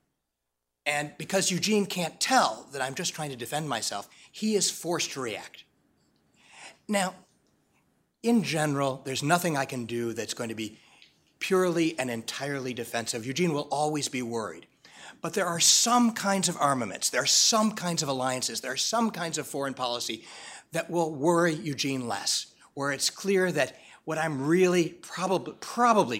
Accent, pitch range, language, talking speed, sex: American, 120-175 Hz, English, 165 wpm, male